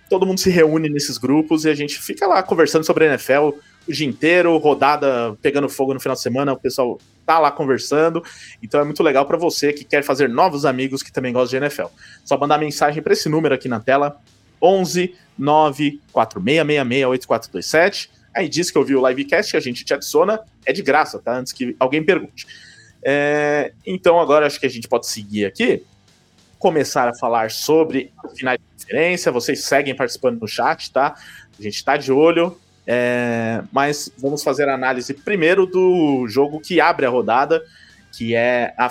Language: Portuguese